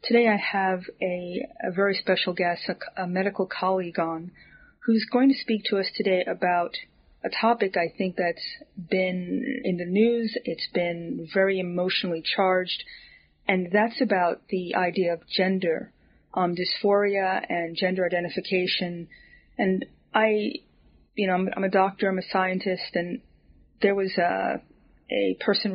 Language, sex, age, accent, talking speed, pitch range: English, female, 30-49, American, 150 wpm, 180-210 Hz